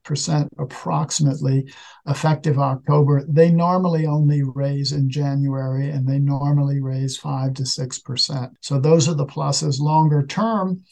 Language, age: English, 50-69